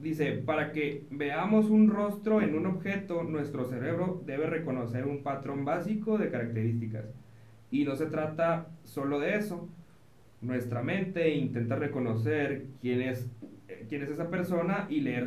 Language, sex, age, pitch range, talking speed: Spanish, male, 30-49, 115-165 Hz, 145 wpm